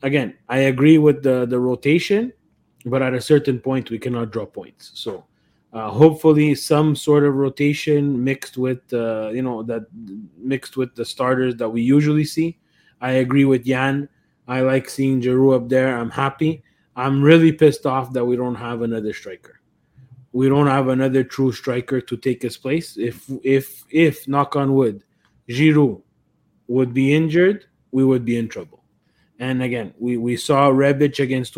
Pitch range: 125-150 Hz